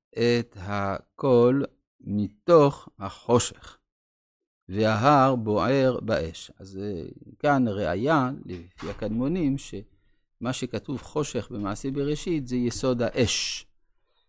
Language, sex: Hebrew, male